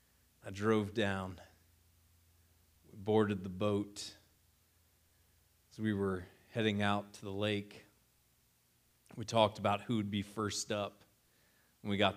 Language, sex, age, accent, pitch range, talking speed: English, male, 30-49, American, 95-110 Hz, 130 wpm